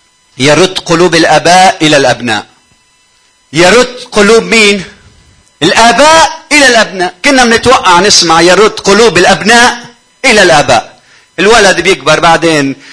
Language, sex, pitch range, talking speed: Arabic, male, 175-265 Hz, 100 wpm